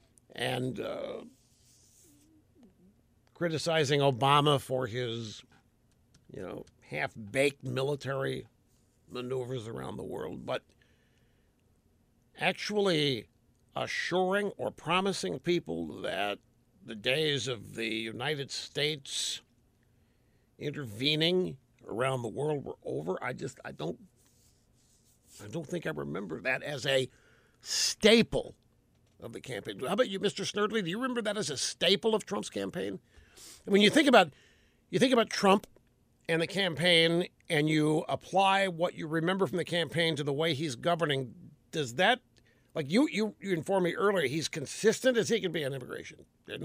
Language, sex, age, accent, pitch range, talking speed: English, male, 60-79, American, 125-185 Hz, 140 wpm